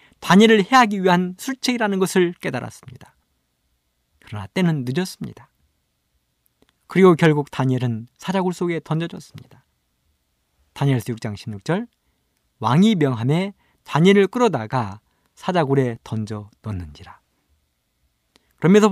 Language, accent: Korean, native